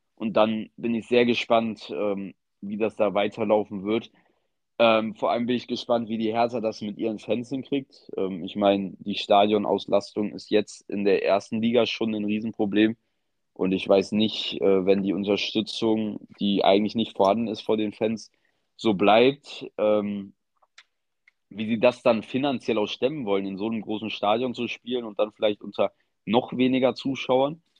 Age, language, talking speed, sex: 20-39, German, 175 wpm, male